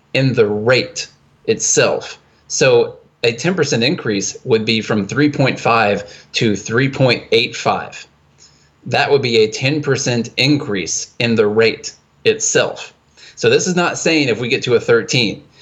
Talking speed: 135 wpm